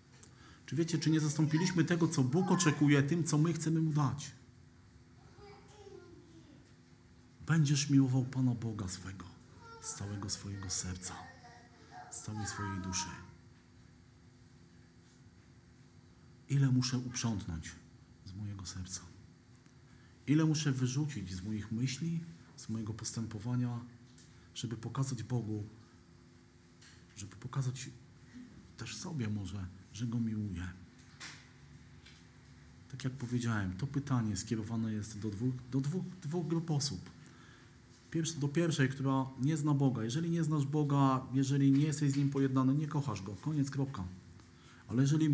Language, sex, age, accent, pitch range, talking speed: Polish, male, 50-69, native, 105-135 Hz, 120 wpm